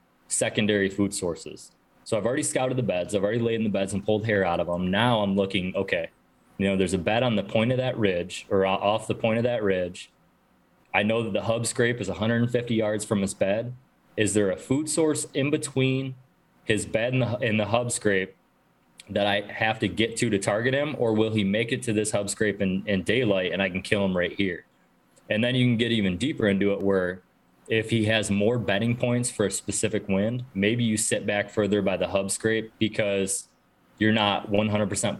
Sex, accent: male, American